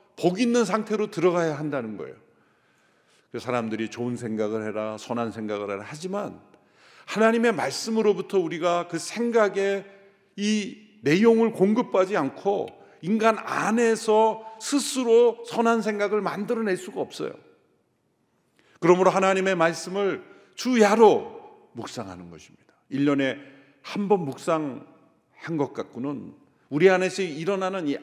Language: Korean